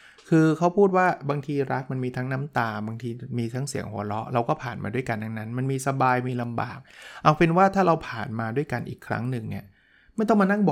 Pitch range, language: 115-145 Hz, Thai